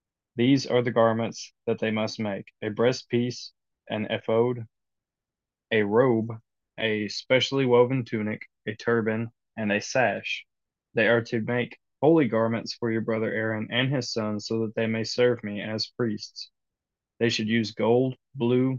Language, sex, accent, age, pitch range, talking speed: English, male, American, 20-39, 110-120 Hz, 160 wpm